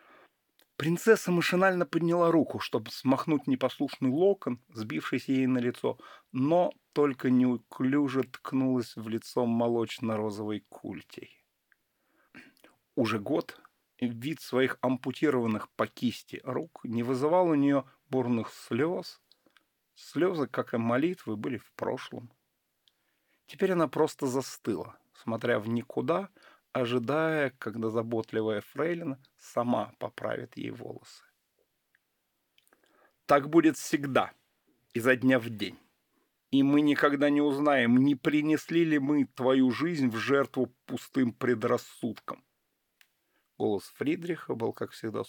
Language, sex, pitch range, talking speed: Russian, male, 120-145 Hz, 110 wpm